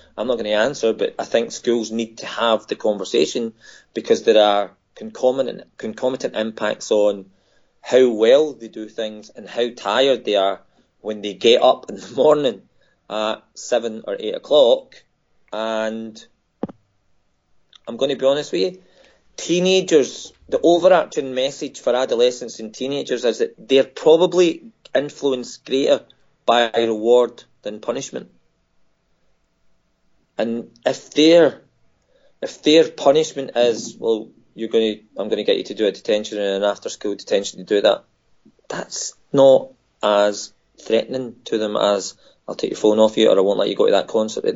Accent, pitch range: British, 110-155 Hz